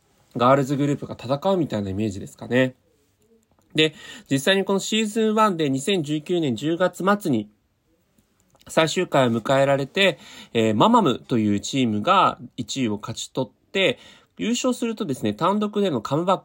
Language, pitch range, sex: Japanese, 110-165 Hz, male